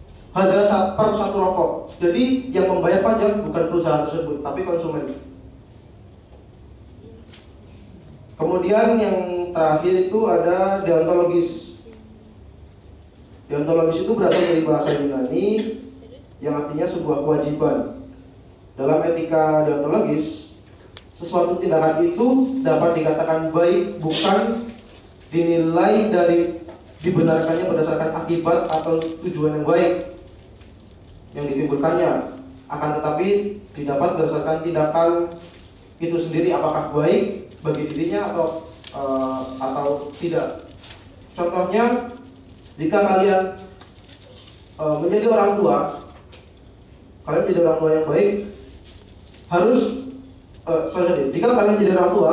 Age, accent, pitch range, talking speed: 30-49, native, 130-180 Hz, 105 wpm